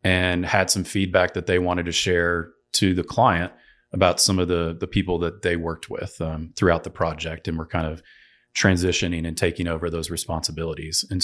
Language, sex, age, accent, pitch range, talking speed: English, male, 30-49, American, 90-100 Hz, 200 wpm